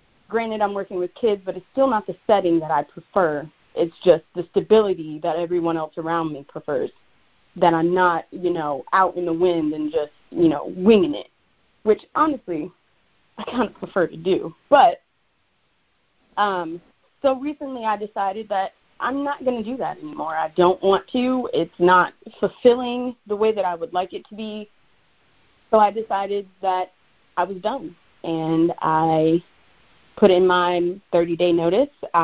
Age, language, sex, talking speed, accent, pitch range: 30-49, English, female, 170 wpm, American, 170-220 Hz